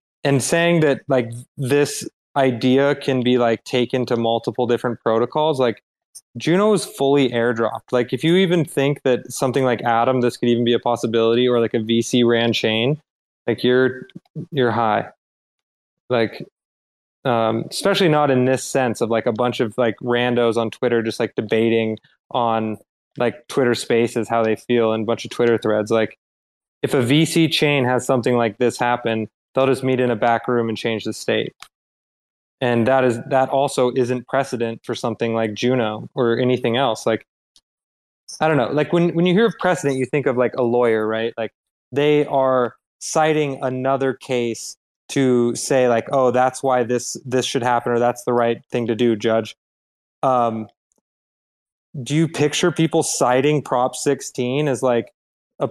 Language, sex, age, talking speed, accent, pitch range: English, male, 20-39, 175 wpm, American, 115-135 Hz